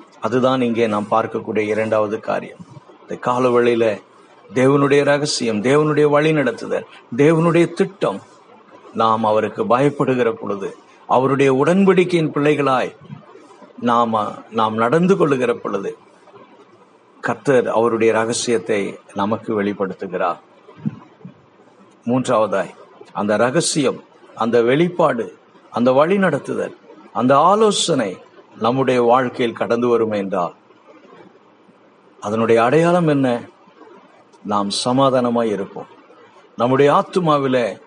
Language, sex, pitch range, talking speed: Tamil, male, 110-150 Hz, 75 wpm